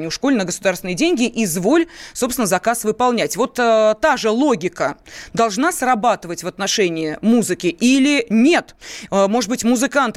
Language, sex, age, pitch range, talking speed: Russian, female, 20-39, 190-255 Hz, 135 wpm